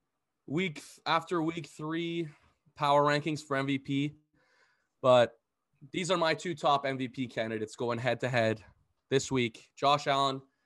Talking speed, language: 125 wpm, English